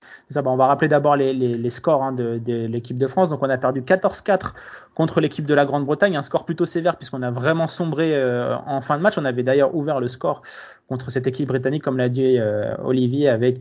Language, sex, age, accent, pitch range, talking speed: French, male, 20-39, French, 130-165 Hz, 245 wpm